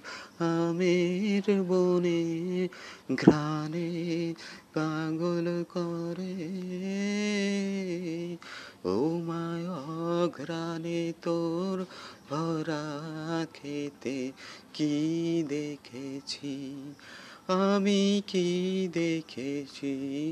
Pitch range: 125-170 Hz